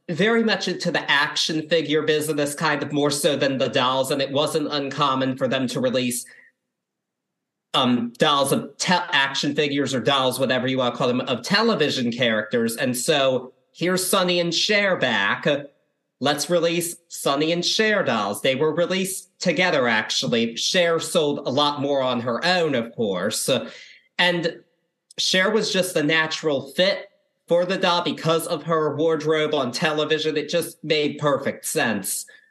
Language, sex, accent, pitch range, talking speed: English, male, American, 140-180 Hz, 160 wpm